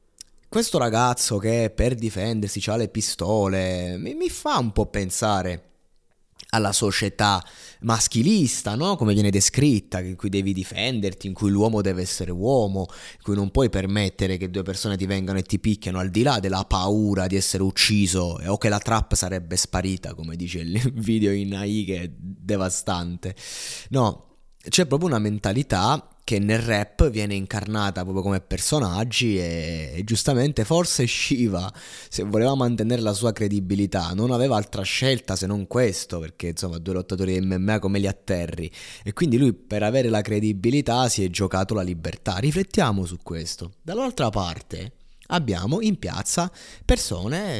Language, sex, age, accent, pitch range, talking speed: Italian, male, 20-39, native, 95-115 Hz, 160 wpm